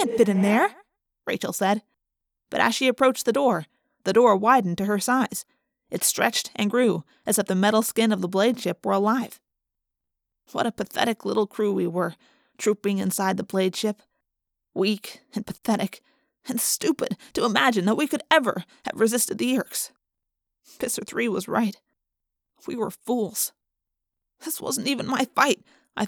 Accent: American